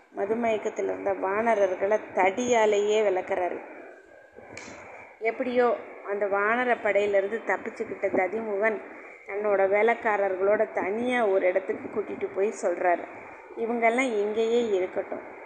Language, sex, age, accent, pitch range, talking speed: Tamil, female, 20-39, native, 195-235 Hz, 85 wpm